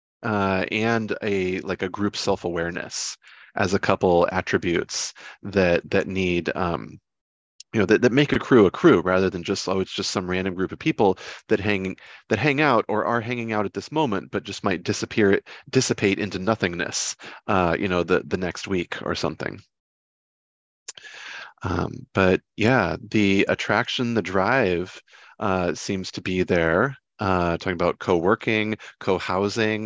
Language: English